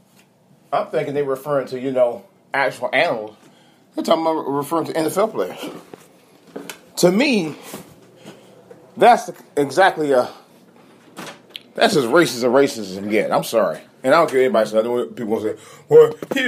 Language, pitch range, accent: English, 135-165 Hz, American